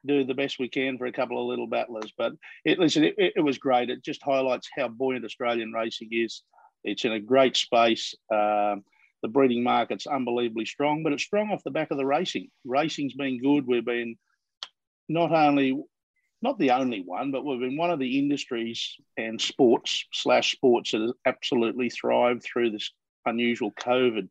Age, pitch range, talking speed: 50-69, 115-140 Hz, 185 wpm